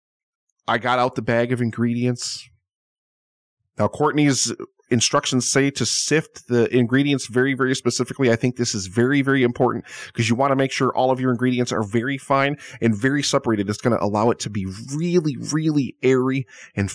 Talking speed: 185 wpm